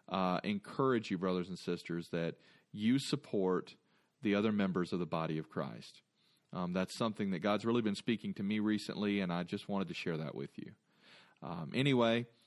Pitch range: 105-130 Hz